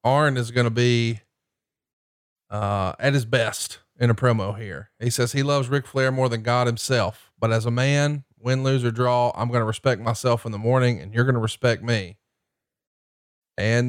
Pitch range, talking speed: 115-130 Hz, 200 wpm